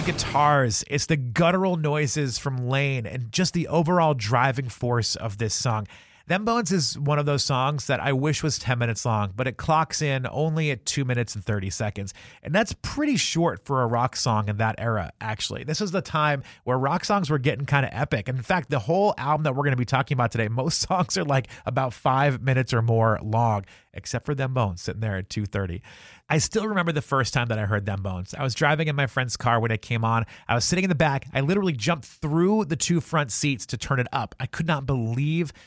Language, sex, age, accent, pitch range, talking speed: English, male, 30-49, American, 120-155 Hz, 235 wpm